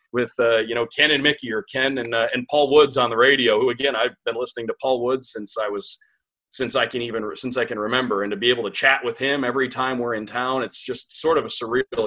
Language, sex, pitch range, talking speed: English, male, 105-145 Hz, 275 wpm